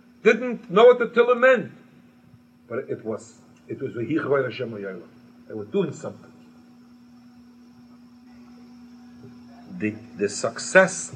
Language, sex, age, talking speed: English, male, 50-69, 95 wpm